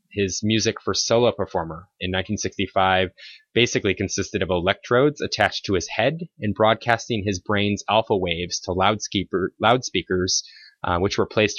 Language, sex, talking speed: English, male, 140 wpm